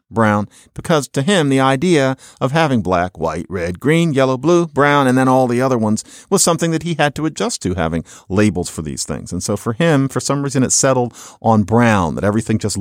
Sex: male